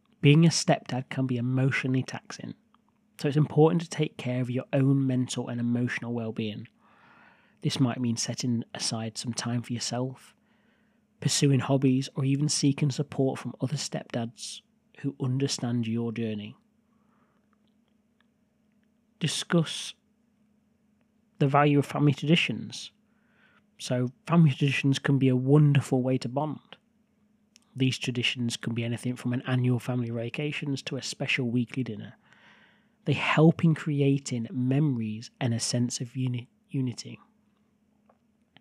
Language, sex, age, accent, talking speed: English, male, 30-49, British, 130 wpm